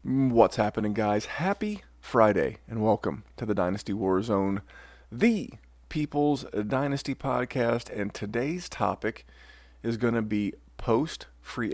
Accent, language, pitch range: American, English, 100-120 Hz